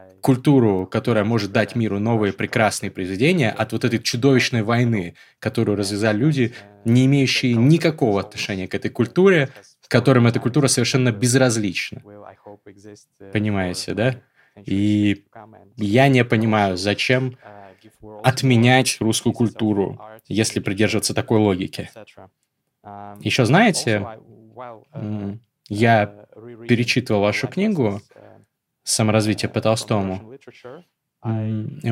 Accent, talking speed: native, 100 wpm